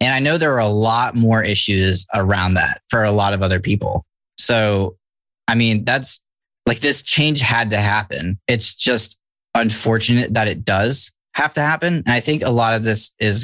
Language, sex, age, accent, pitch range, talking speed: English, male, 20-39, American, 100-120 Hz, 195 wpm